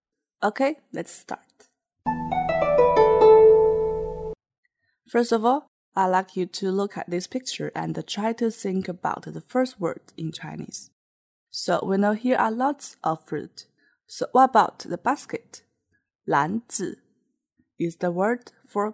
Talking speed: 135 wpm